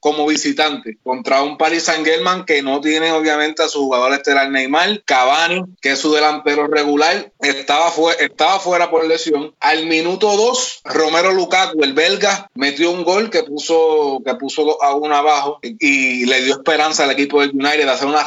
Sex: male